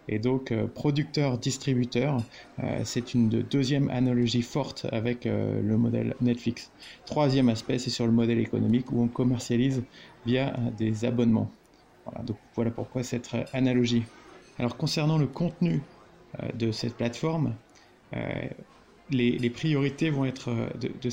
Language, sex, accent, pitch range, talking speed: French, male, French, 120-140 Hz, 125 wpm